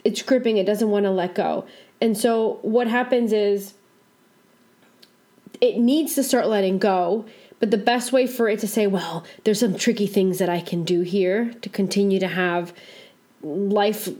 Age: 20-39